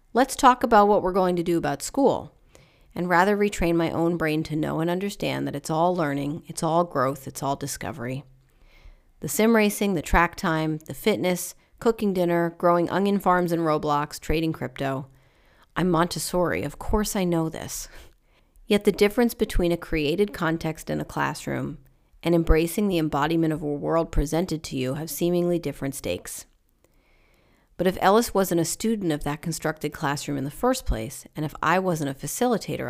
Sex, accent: female, American